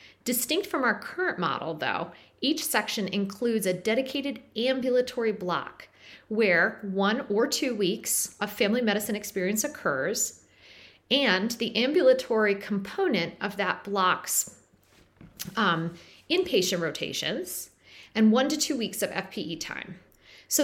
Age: 40-59